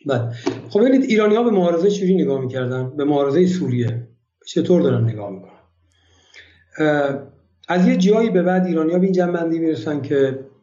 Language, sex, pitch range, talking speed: Persian, male, 140-165 Hz, 160 wpm